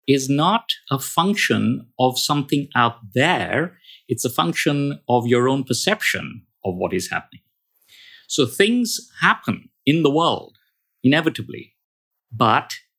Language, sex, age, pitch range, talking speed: English, male, 50-69, 125-175 Hz, 125 wpm